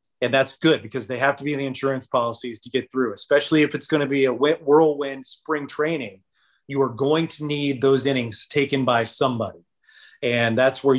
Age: 30-49